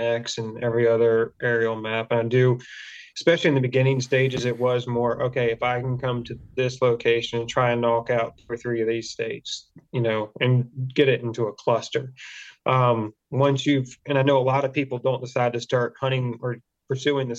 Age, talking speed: 30-49, 205 wpm